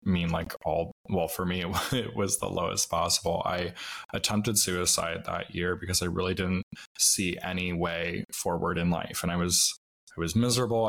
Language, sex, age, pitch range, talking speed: English, male, 20-39, 90-110 Hz, 175 wpm